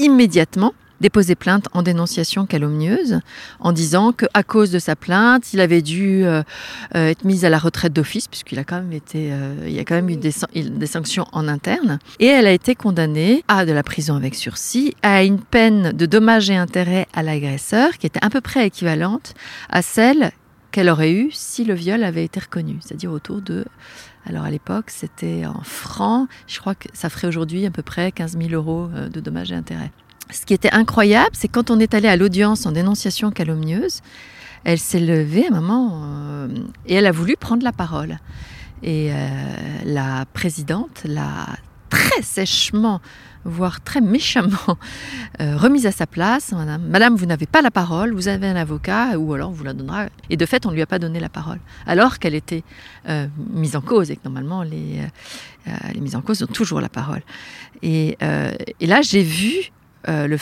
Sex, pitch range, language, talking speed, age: female, 160-220 Hz, French, 200 wpm, 40-59